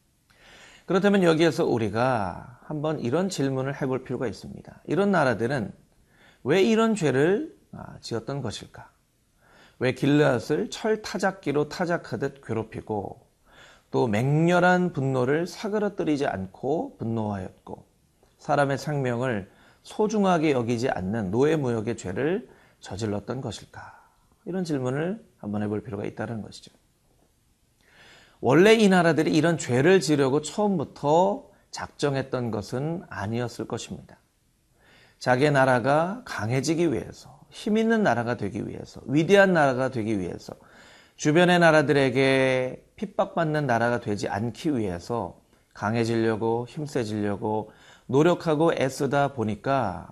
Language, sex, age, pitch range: Korean, male, 40-59, 115-165 Hz